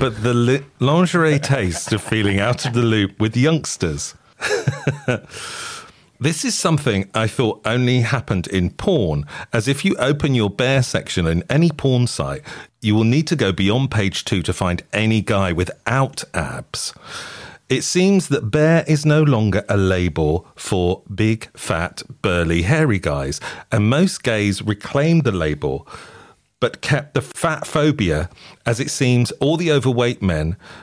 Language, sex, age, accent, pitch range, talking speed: English, male, 40-59, British, 100-145 Hz, 155 wpm